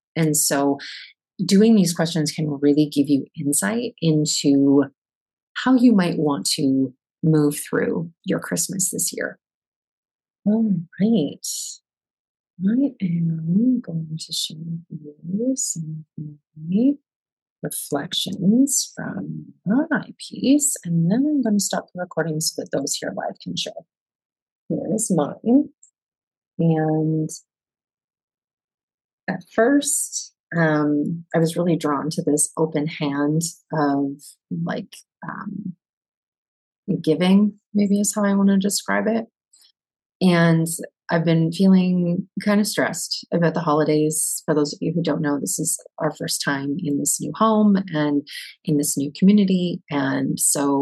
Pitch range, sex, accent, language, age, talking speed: 150-205 Hz, female, American, English, 30-49, 130 wpm